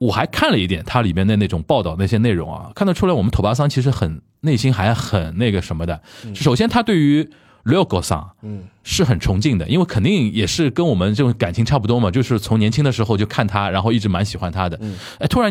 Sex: male